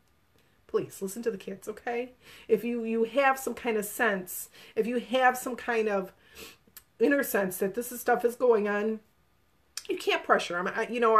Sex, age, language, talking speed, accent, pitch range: female, 30-49, English, 195 wpm, American, 200-250 Hz